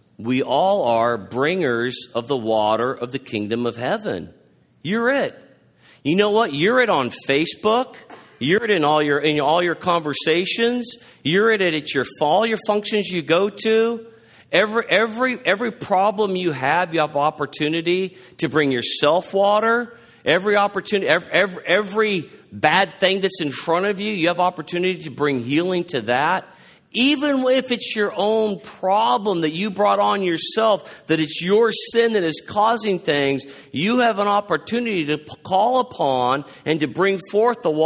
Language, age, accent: English, 50-69, American